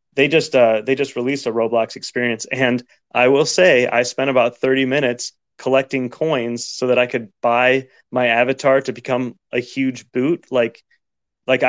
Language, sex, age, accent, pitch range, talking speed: English, male, 20-39, American, 115-135 Hz, 175 wpm